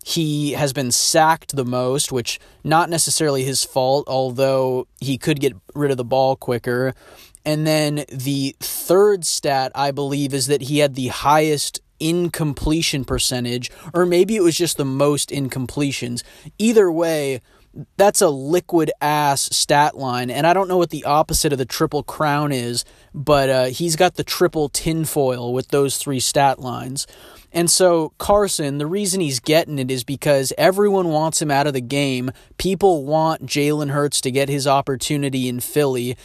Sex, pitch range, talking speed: male, 135-165 Hz, 165 wpm